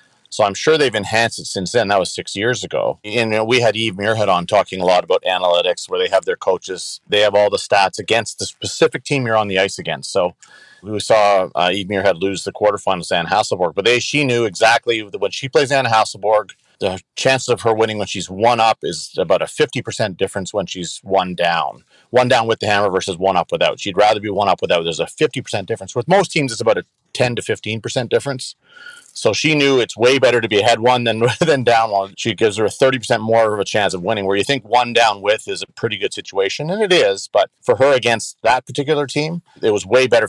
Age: 40-59